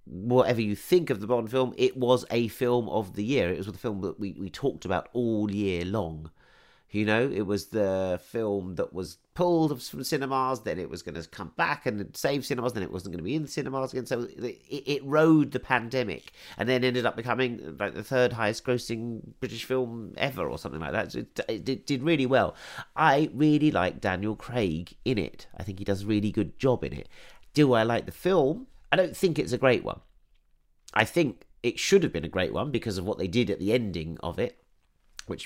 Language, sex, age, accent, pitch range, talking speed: English, male, 40-59, British, 105-160 Hz, 230 wpm